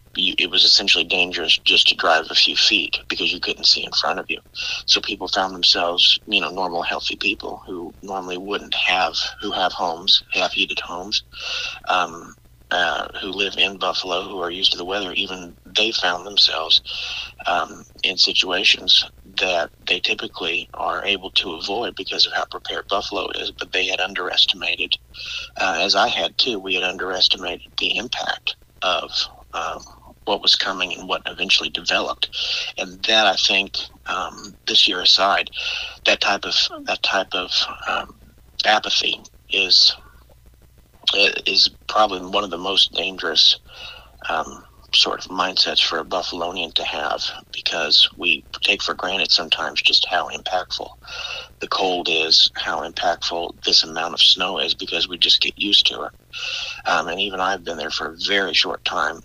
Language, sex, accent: English, male, American